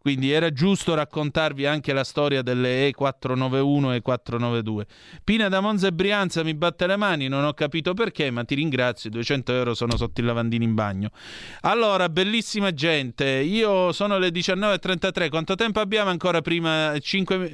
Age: 30-49